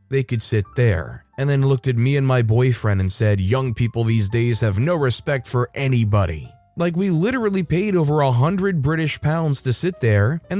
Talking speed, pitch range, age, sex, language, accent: 205 wpm, 110-160 Hz, 20-39, male, English, American